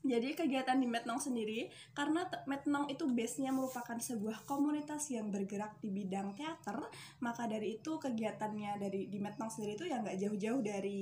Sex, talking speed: female, 165 wpm